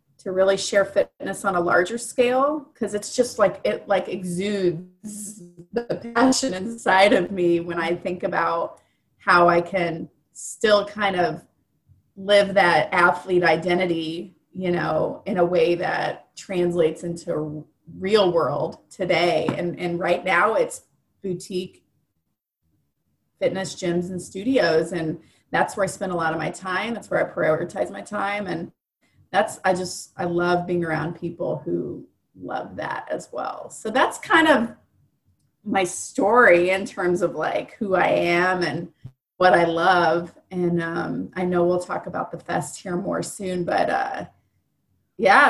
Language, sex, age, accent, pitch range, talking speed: English, female, 30-49, American, 175-205 Hz, 155 wpm